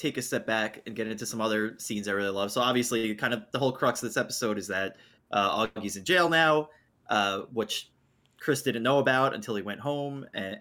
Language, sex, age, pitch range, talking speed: English, male, 20-39, 110-140 Hz, 230 wpm